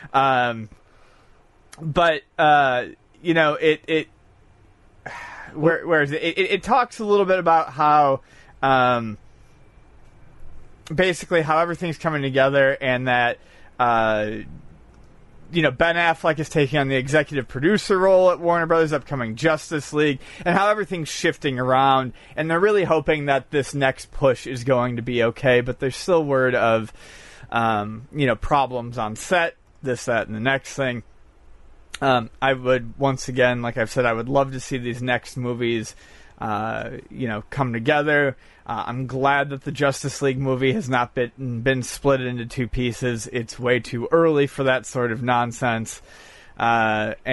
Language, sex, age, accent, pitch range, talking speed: English, male, 30-49, American, 120-155 Hz, 160 wpm